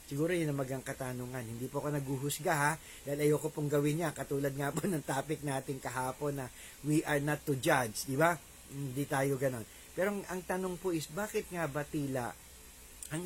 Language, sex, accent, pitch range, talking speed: English, male, Filipino, 120-165 Hz, 190 wpm